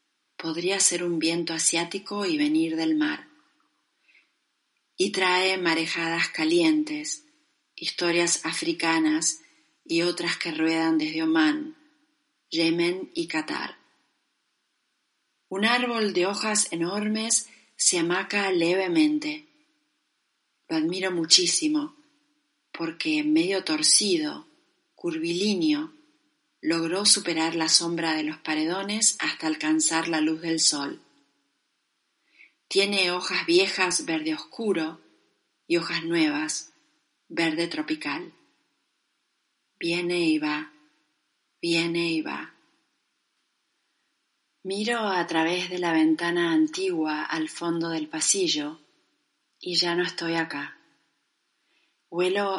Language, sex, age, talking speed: Spanish, female, 40-59, 95 wpm